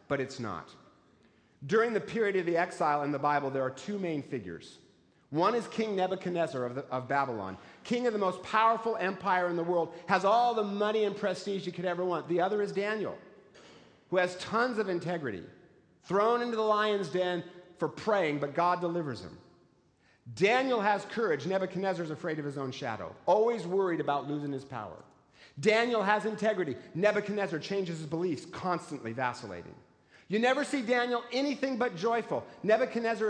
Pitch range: 165-225 Hz